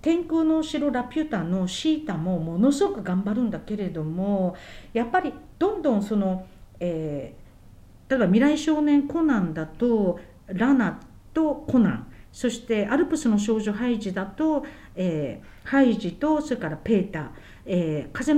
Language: Japanese